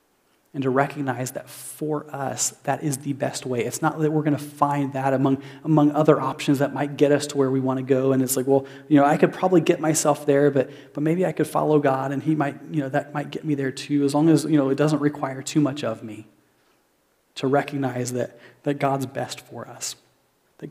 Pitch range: 135-150 Hz